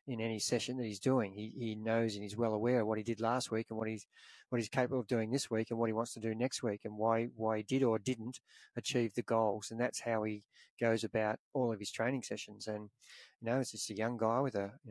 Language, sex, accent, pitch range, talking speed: English, male, Australian, 110-125 Hz, 280 wpm